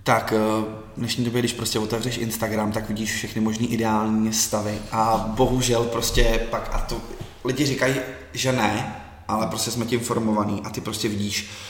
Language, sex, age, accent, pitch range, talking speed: Czech, male, 20-39, native, 110-120 Hz, 170 wpm